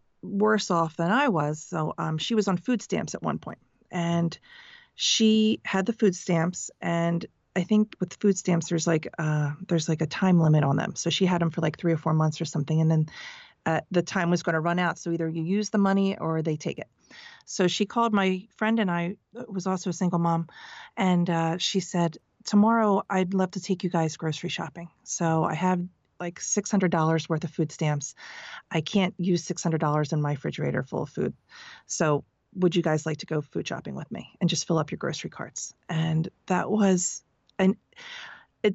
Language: English